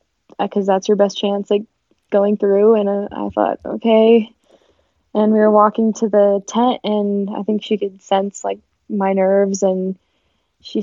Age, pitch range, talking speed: 10-29, 200-225 Hz, 170 wpm